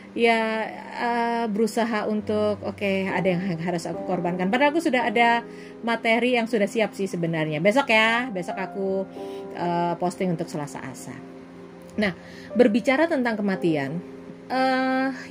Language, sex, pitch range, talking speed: Indonesian, female, 155-225 Hz, 135 wpm